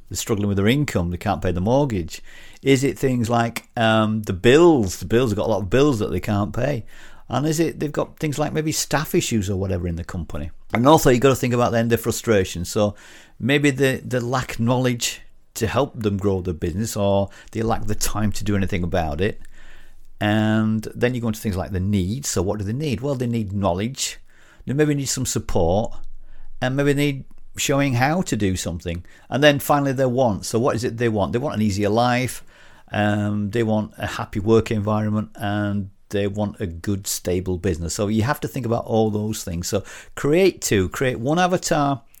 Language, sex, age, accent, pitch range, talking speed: English, male, 50-69, British, 100-125 Hz, 220 wpm